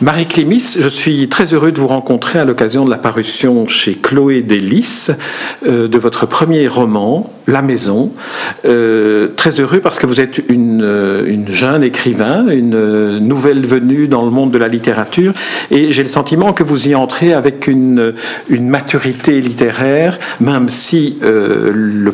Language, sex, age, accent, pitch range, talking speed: French, male, 50-69, French, 115-150 Hz, 165 wpm